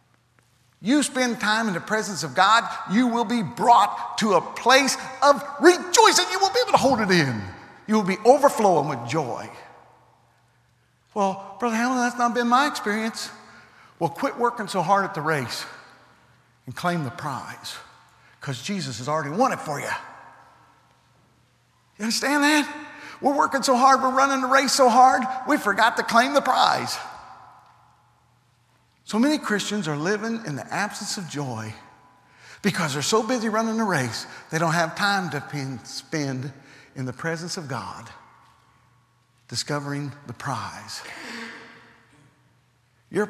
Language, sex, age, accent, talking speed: English, male, 50-69, American, 155 wpm